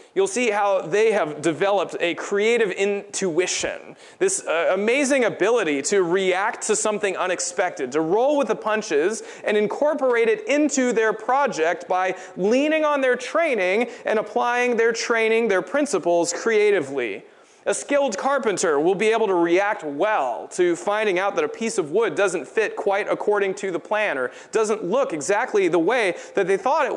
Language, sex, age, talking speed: English, male, 30-49, 165 wpm